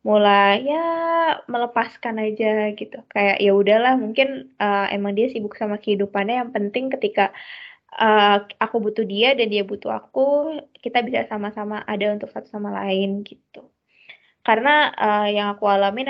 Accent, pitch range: native, 205-255 Hz